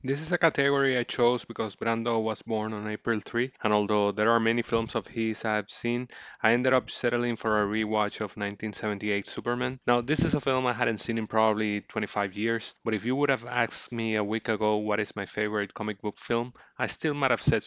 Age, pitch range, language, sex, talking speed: 20-39, 105-120 Hz, English, male, 230 wpm